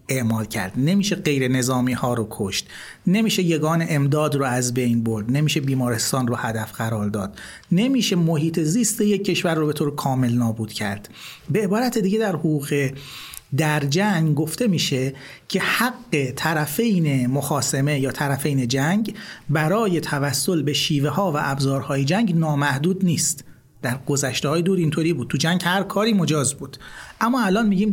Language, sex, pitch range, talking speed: Persian, male, 135-185 Hz, 155 wpm